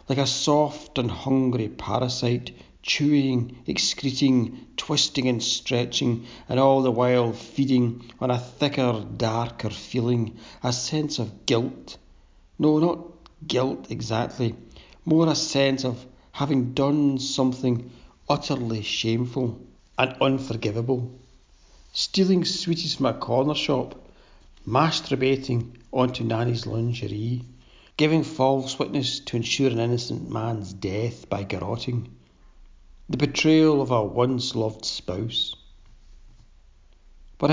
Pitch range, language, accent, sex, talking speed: 115-140 Hz, English, British, male, 110 wpm